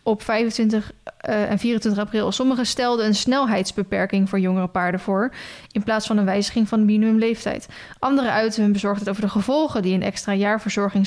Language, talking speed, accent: Dutch, 180 wpm, Dutch